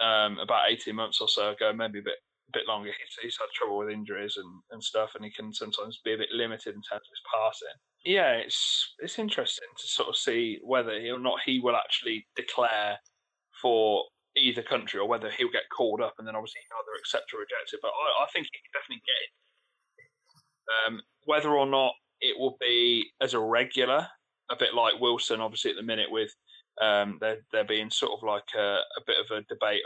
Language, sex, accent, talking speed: English, male, British, 220 wpm